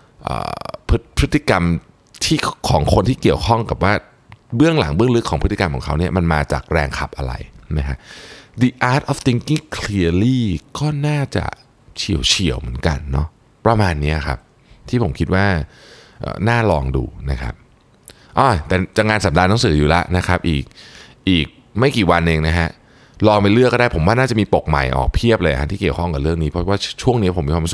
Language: Thai